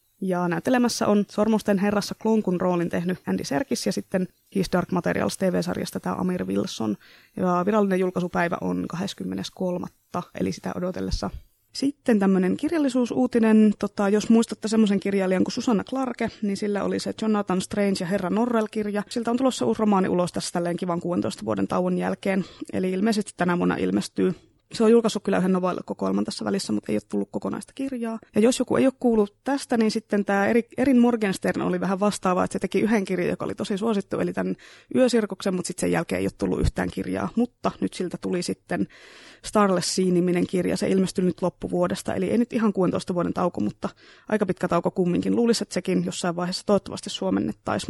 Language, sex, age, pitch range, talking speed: Finnish, female, 20-39, 170-220 Hz, 180 wpm